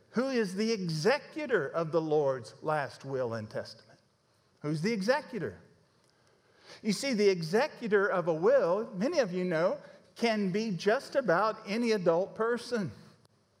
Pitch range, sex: 185-240 Hz, male